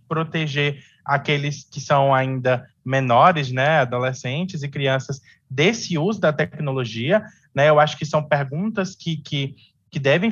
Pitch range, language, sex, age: 130-160 Hz, English, male, 20-39